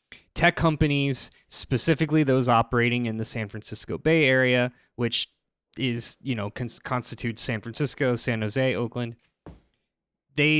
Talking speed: 130 wpm